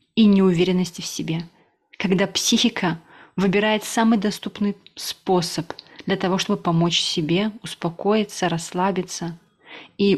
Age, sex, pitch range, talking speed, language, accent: 20-39, female, 175-210 Hz, 105 wpm, Russian, native